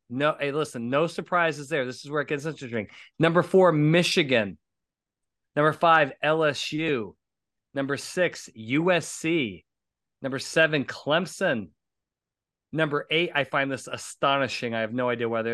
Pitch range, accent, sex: 125-160 Hz, American, male